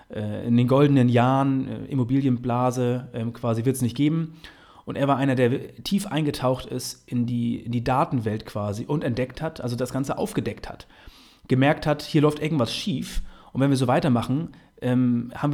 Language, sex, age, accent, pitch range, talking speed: German, male, 30-49, German, 120-145 Hz, 170 wpm